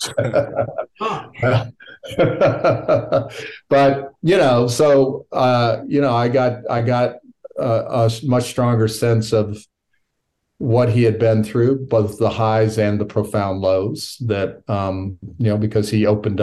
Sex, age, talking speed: male, 50-69, 130 wpm